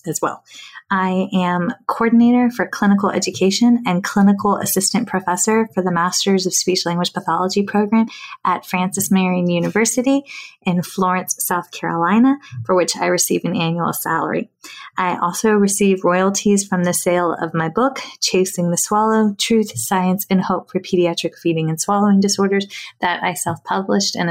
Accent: American